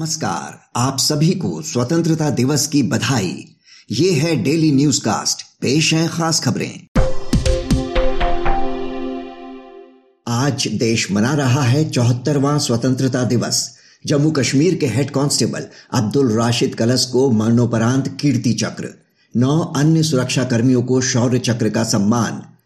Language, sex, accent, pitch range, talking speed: Hindi, male, native, 120-145 Hz, 115 wpm